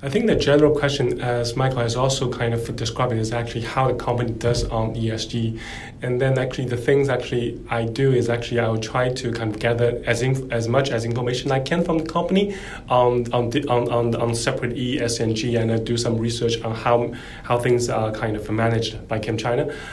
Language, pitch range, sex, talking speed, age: English, 115-125 Hz, male, 220 wpm, 20-39